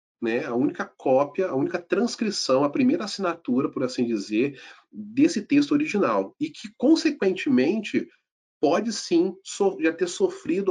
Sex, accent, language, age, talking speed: male, Brazilian, Portuguese, 40-59, 135 wpm